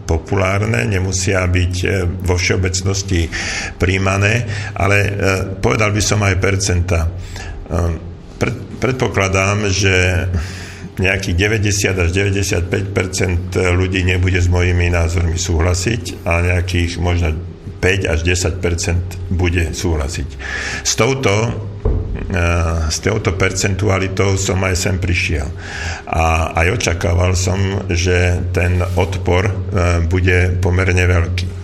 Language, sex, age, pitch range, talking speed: Slovak, male, 50-69, 90-100 Hz, 95 wpm